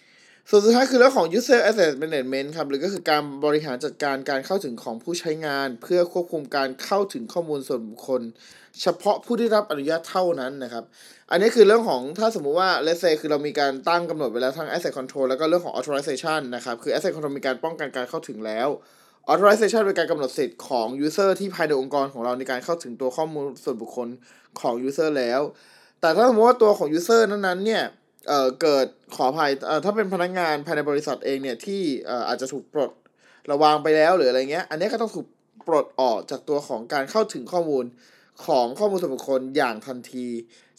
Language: Thai